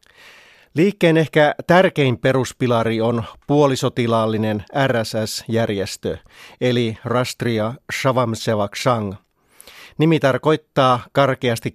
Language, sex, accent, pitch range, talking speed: Finnish, male, native, 110-135 Hz, 65 wpm